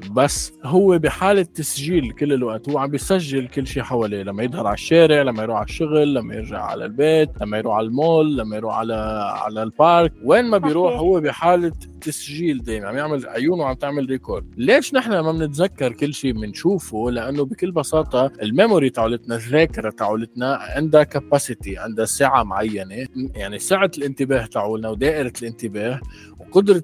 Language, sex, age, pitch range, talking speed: Arabic, male, 20-39, 115-160 Hz, 165 wpm